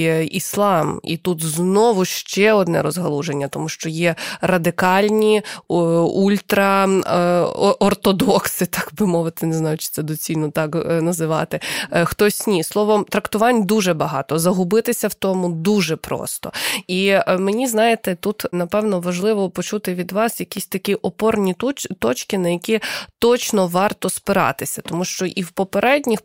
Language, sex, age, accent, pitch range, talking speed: Ukrainian, female, 20-39, native, 170-215 Hz, 130 wpm